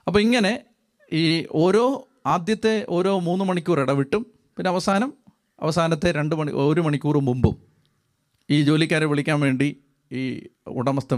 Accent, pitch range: native, 150-195 Hz